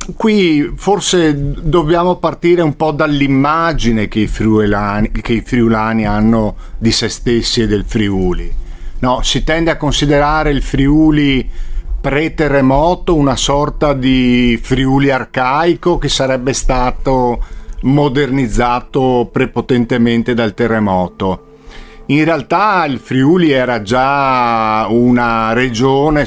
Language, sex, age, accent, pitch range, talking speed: Italian, male, 50-69, native, 110-140 Hz, 105 wpm